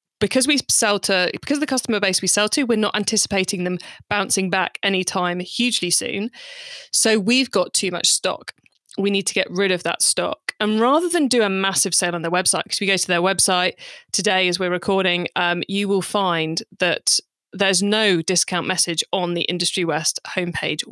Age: 20-39